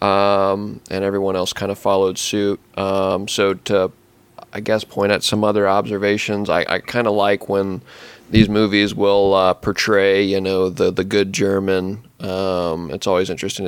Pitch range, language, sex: 95-105 Hz, English, male